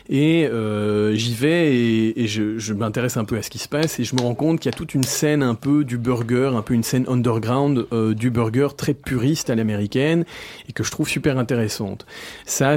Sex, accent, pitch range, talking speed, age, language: male, French, 105-130 Hz, 235 wpm, 40-59, French